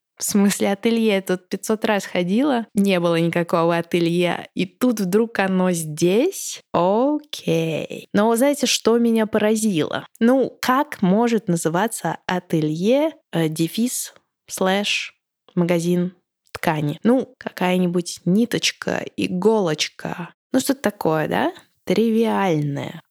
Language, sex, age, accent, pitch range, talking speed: Russian, female, 20-39, native, 175-235 Hz, 115 wpm